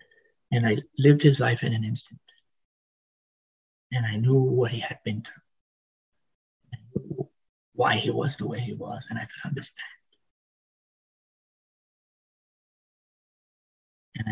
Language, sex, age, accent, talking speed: English, male, 50-69, American, 120 wpm